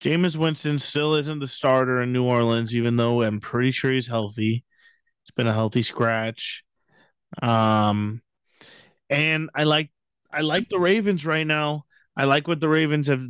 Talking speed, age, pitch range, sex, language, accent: 165 wpm, 30-49, 120-155 Hz, male, English, American